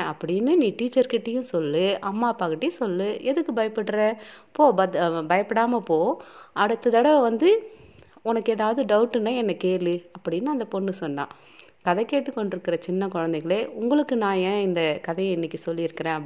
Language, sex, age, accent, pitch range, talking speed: Tamil, female, 30-49, native, 185-240 Hz, 130 wpm